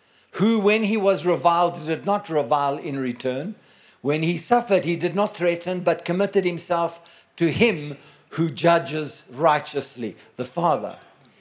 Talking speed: 140 wpm